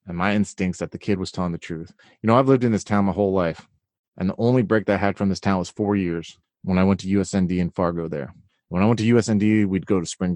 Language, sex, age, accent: English, male, 30-49, American